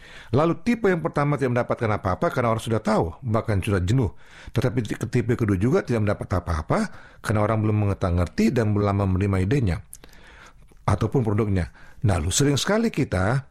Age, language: 40-59, Indonesian